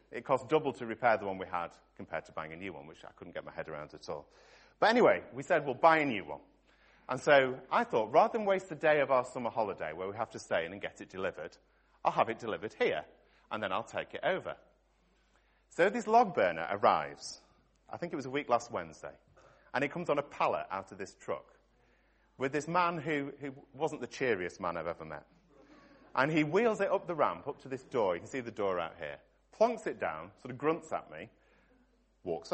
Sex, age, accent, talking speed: male, 30-49, British, 240 wpm